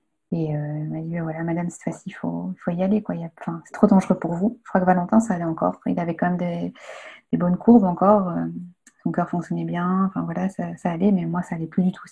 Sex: female